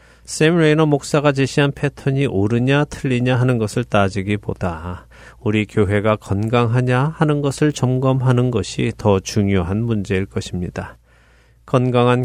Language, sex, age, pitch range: Korean, male, 40-59, 100-130 Hz